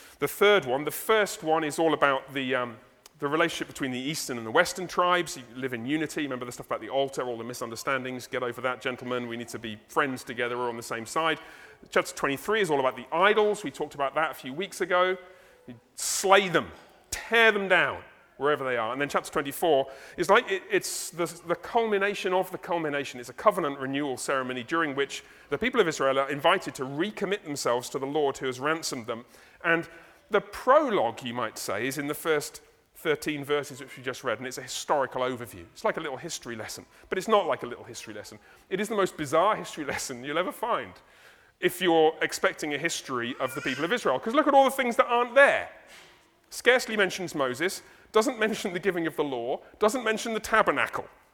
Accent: British